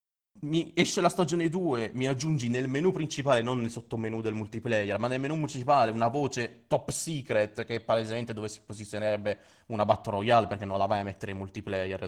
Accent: native